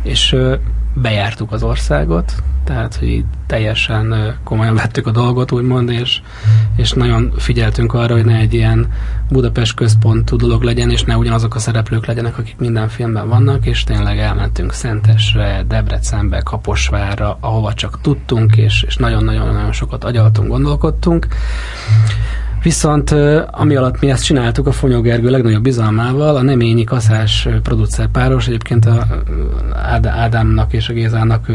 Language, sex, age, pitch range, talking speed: Hungarian, male, 20-39, 110-125 Hz, 135 wpm